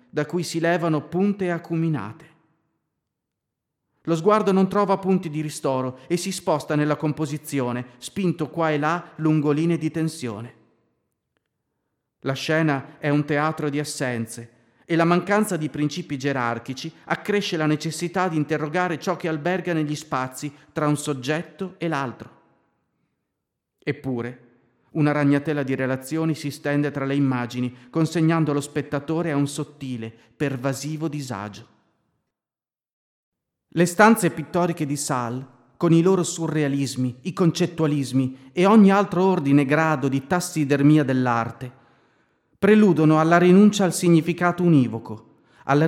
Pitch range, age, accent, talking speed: 135-170 Hz, 40-59, native, 130 wpm